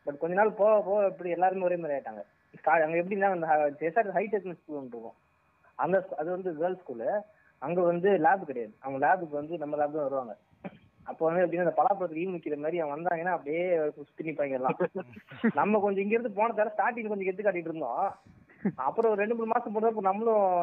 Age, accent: 20-39, native